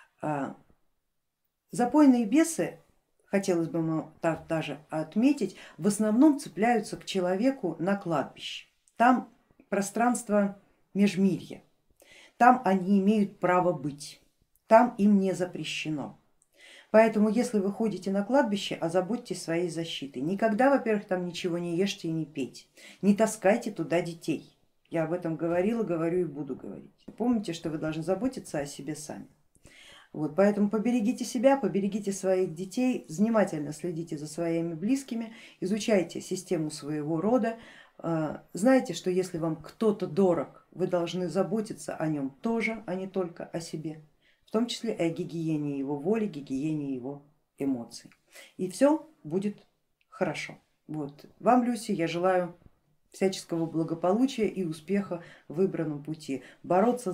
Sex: female